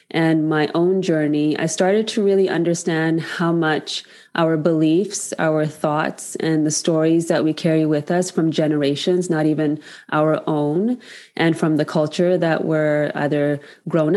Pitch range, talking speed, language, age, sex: 155-180 Hz, 155 wpm, English, 20-39, female